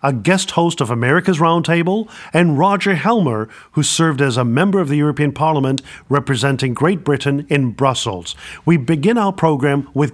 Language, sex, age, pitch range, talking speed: English, male, 50-69, 140-175 Hz, 165 wpm